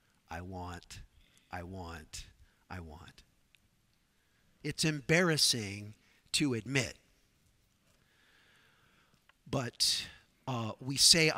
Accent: American